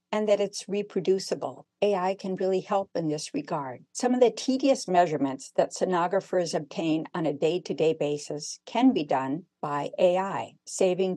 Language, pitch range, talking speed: English, 160-195 Hz, 155 wpm